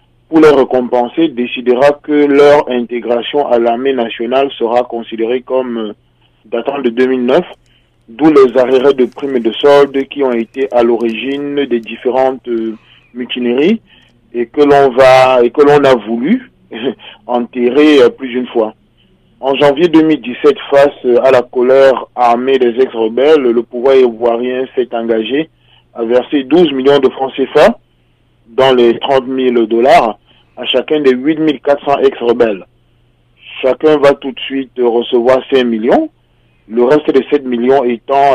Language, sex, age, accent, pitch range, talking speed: French, male, 40-59, French, 120-140 Hz, 145 wpm